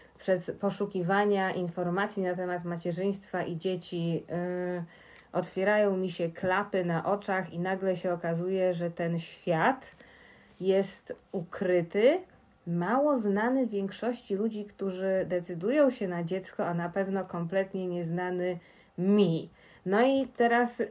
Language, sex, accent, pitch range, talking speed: Polish, female, native, 180-200 Hz, 120 wpm